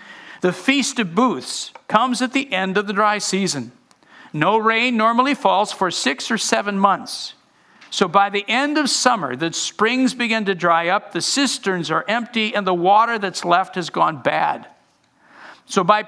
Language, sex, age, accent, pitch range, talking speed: English, male, 50-69, American, 150-225 Hz, 175 wpm